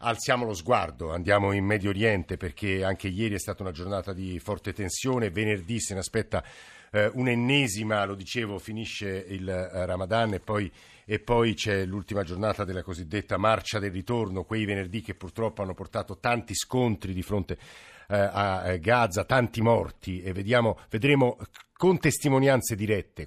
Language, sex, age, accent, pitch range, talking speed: Italian, male, 50-69, native, 95-120 Hz, 145 wpm